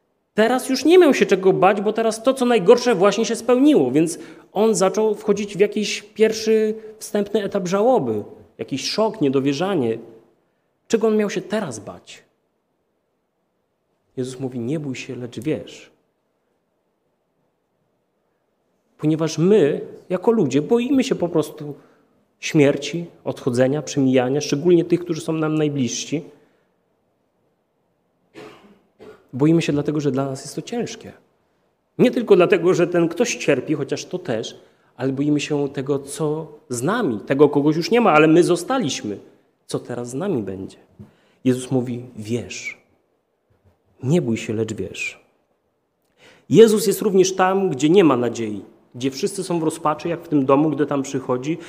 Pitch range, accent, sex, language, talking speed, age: 135-215 Hz, native, male, Polish, 145 wpm, 30-49